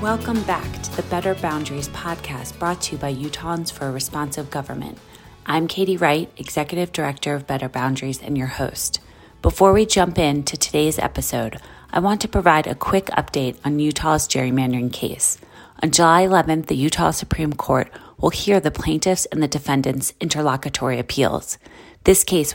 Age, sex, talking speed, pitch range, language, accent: 30-49, female, 165 wpm, 135-165 Hz, English, American